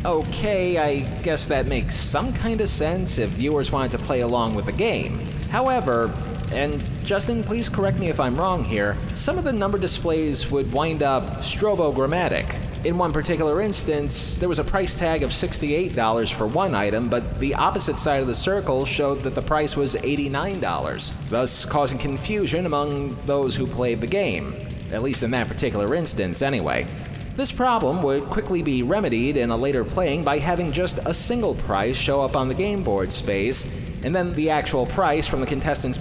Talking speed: 185 wpm